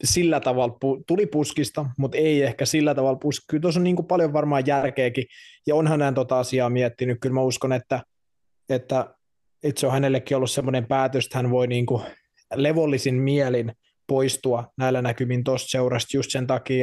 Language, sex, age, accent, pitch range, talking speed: Finnish, male, 20-39, native, 130-145 Hz, 170 wpm